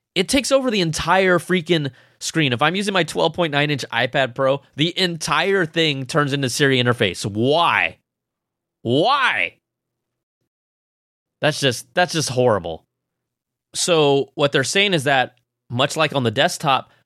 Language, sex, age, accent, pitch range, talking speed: English, male, 20-39, American, 125-165 Hz, 135 wpm